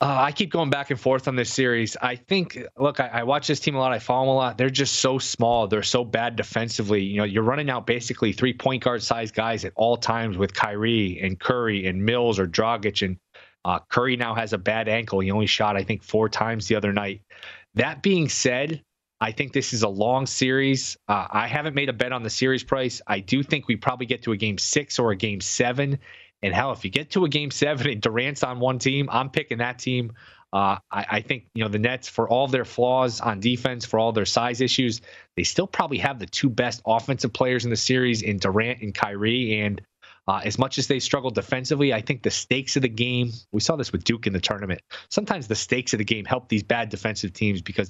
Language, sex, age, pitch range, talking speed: English, male, 20-39, 110-130 Hz, 245 wpm